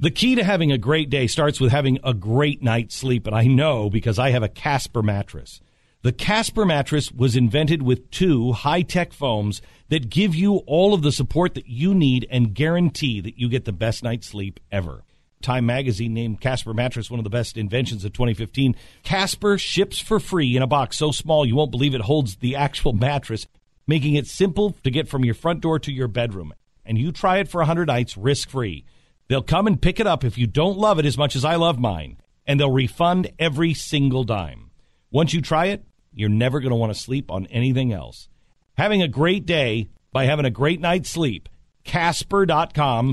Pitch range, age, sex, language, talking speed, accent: 120-165 Hz, 50-69, male, English, 205 wpm, American